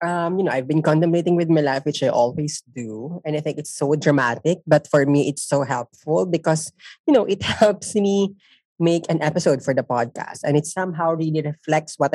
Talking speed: 210 wpm